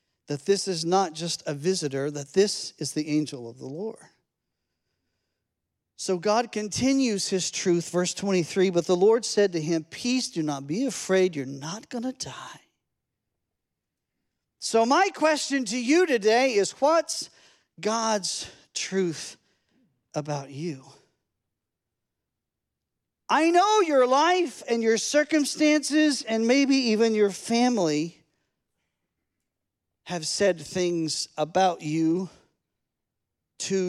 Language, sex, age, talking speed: English, male, 50-69, 120 wpm